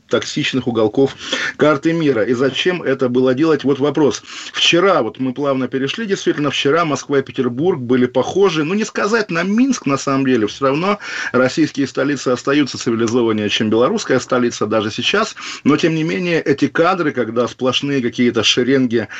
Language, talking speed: Russian, 165 wpm